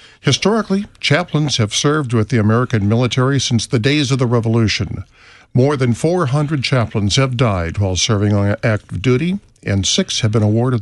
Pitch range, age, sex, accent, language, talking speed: 110-140 Hz, 50-69, male, American, English, 165 wpm